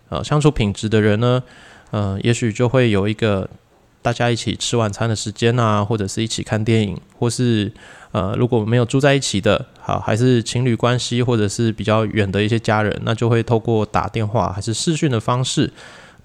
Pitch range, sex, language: 105-125 Hz, male, Chinese